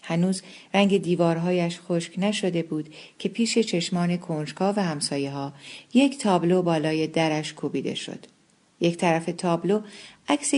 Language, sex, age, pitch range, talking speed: Persian, female, 50-69, 160-200 Hz, 130 wpm